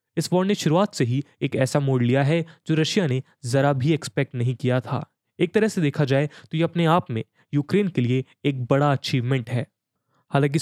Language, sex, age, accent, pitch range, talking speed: English, male, 10-29, Indian, 135-170 Hz, 215 wpm